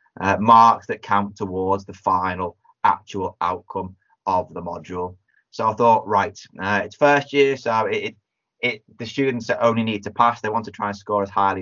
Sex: male